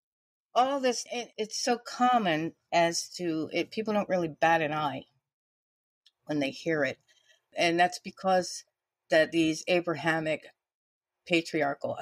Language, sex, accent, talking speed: English, female, American, 120 wpm